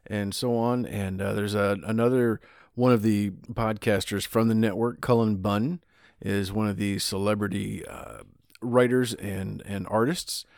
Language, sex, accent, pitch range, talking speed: English, male, American, 105-135 Hz, 155 wpm